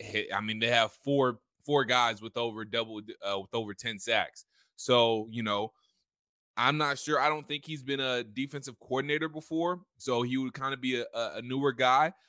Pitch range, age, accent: 105-135 Hz, 20-39, American